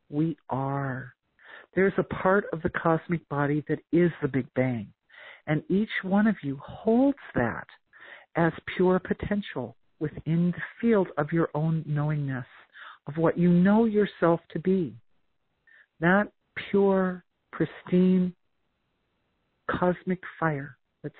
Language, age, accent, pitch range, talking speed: English, 50-69, American, 140-185 Hz, 125 wpm